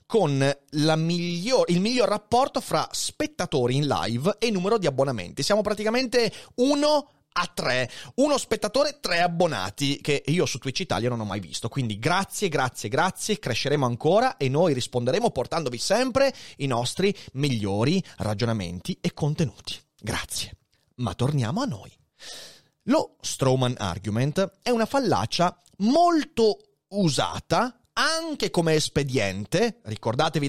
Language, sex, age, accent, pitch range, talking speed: Italian, male, 30-49, native, 130-210 Hz, 130 wpm